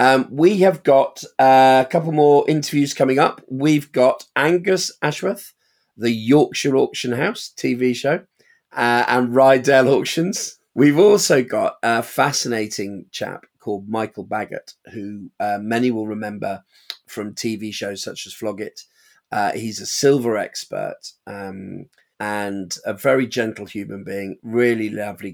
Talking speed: 140 wpm